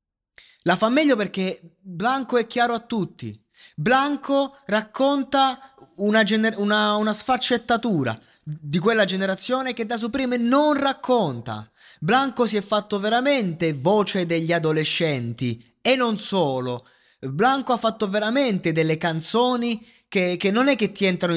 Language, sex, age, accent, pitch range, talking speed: Italian, male, 20-39, native, 160-225 Hz, 130 wpm